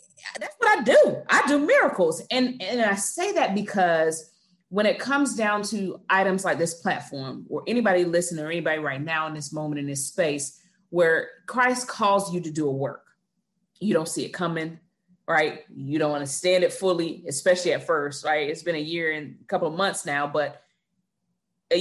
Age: 30-49